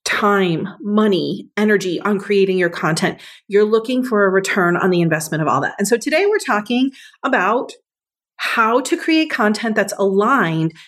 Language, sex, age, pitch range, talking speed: English, female, 30-49, 190-255 Hz, 165 wpm